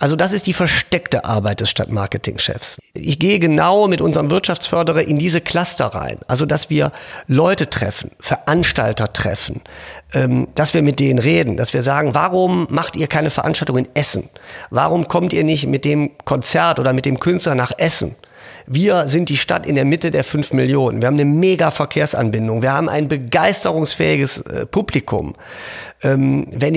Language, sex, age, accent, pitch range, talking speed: German, male, 40-59, German, 125-185 Hz, 170 wpm